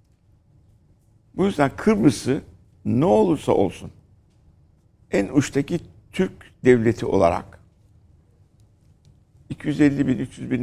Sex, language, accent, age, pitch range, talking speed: male, Turkish, native, 60-79, 95-135 Hz, 85 wpm